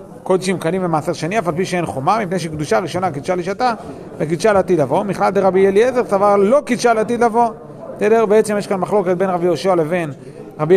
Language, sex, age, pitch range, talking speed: Hebrew, male, 40-59, 170-215 Hz, 195 wpm